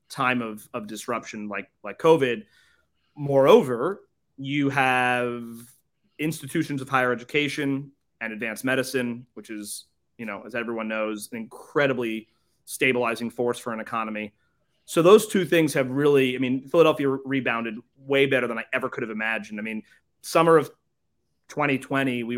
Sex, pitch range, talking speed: male, 115-135 Hz, 145 wpm